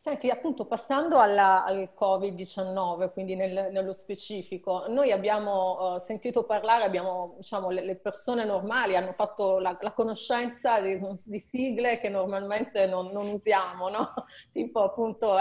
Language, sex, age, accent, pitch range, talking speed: Italian, female, 30-49, native, 195-230 Hz, 130 wpm